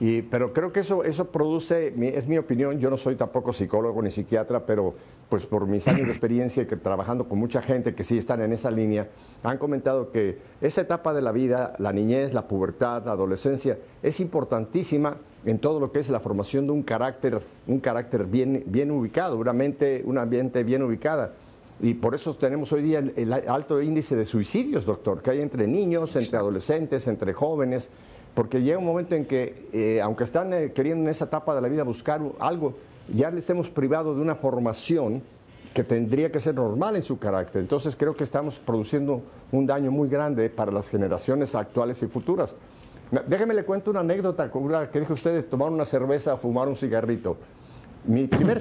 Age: 50-69